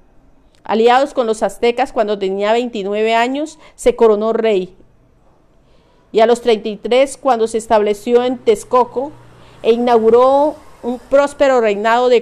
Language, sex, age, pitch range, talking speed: Spanish, female, 40-59, 200-245 Hz, 130 wpm